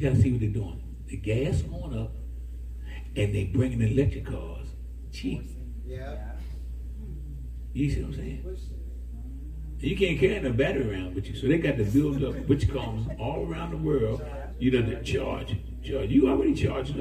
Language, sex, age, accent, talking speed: English, male, 60-79, American, 185 wpm